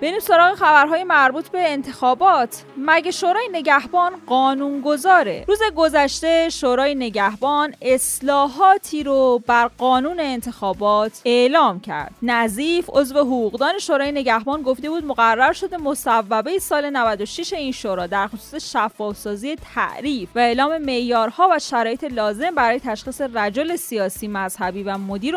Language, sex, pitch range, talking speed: Persian, female, 215-290 Hz, 125 wpm